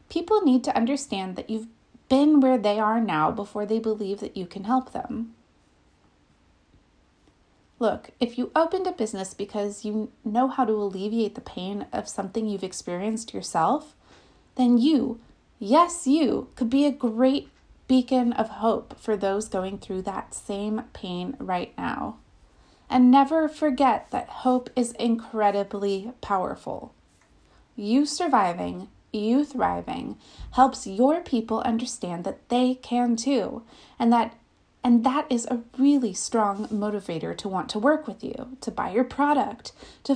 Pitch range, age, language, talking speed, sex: 210-260 Hz, 30-49, English, 145 wpm, female